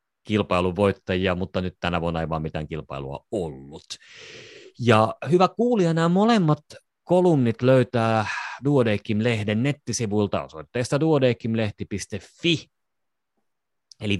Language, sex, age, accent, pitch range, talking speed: Finnish, male, 30-49, native, 85-135 Hz, 95 wpm